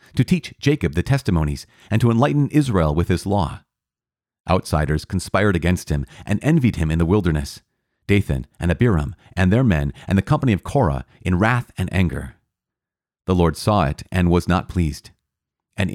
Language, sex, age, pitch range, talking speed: English, male, 40-59, 85-115 Hz, 175 wpm